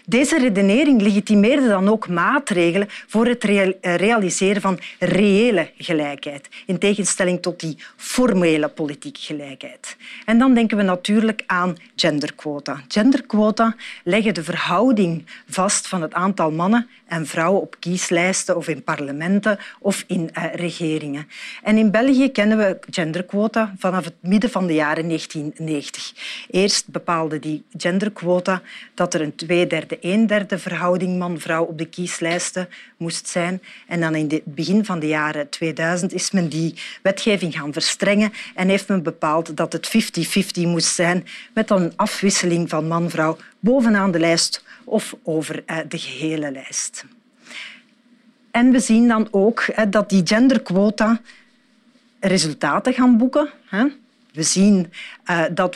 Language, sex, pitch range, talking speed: Dutch, female, 165-215 Hz, 135 wpm